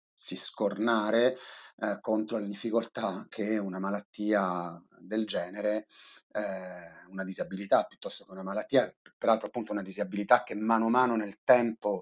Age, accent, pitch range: 30-49, native, 100-115 Hz